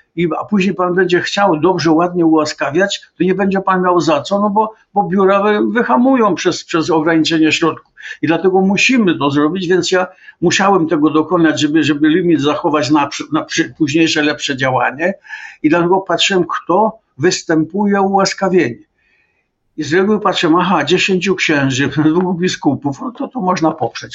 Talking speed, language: 155 wpm, Polish